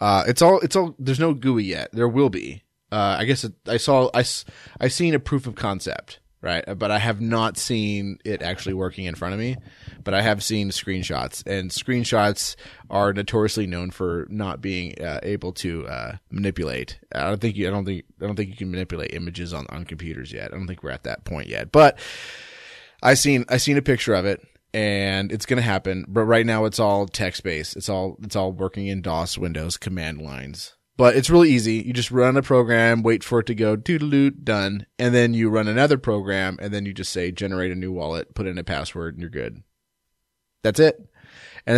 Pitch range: 95-115 Hz